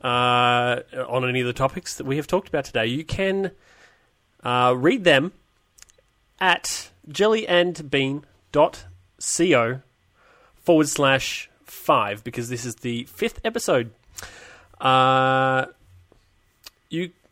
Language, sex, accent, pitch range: English, male, Australian, 120-140 Hz